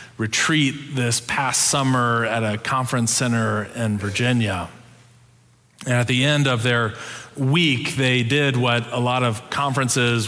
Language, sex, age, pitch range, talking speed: English, male, 30-49, 110-130 Hz, 140 wpm